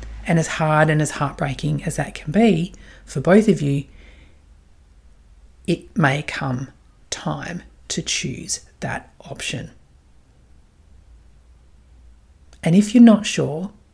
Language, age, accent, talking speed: English, 30-49, Australian, 115 wpm